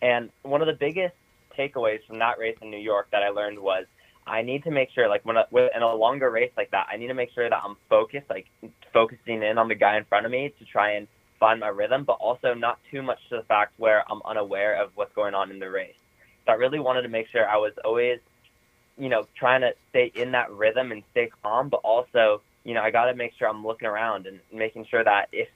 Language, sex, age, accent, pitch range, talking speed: English, male, 20-39, American, 110-145 Hz, 260 wpm